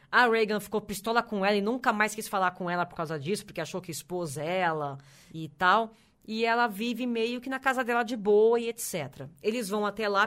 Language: Portuguese